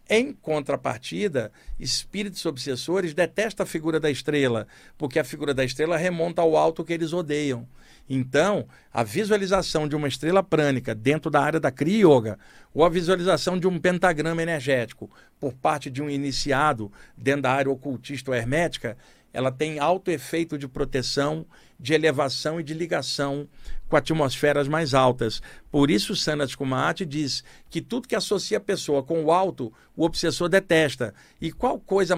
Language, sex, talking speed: Portuguese, male, 160 wpm